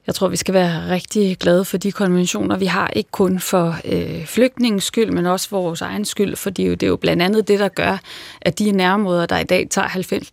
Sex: female